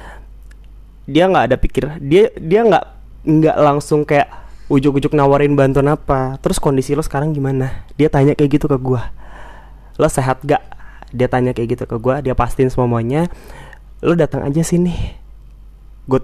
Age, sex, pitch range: 20-39, male, 130-165 Hz